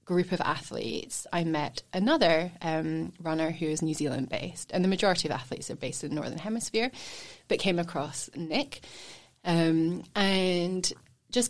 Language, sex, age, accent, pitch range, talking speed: English, female, 20-39, British, 160-215 Hz, 160 wpm